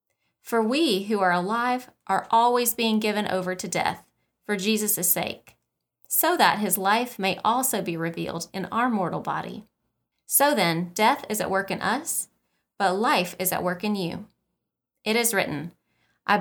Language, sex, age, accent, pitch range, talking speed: English, female, 30-49, American, 180-235 Hz, 170 wpm